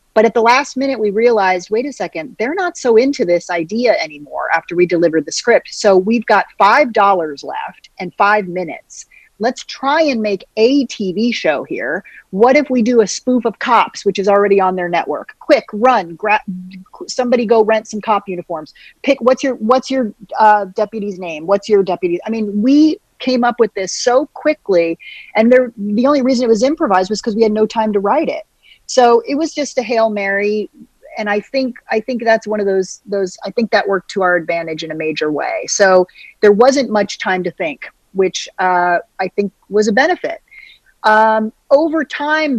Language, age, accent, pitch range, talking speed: English, 40-59, American, 180-240 Hz, 200 wpm